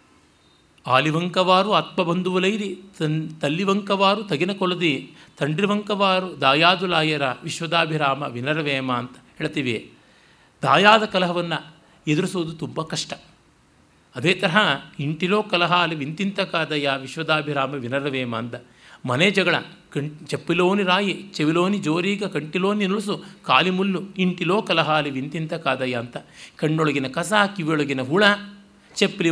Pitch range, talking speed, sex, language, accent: 140-190 Hz, 100 wpm, male, Kannada, native